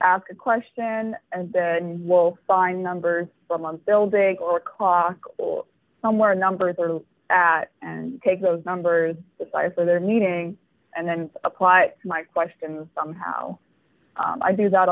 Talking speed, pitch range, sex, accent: 155 wpm, 175-205 Hz, female, American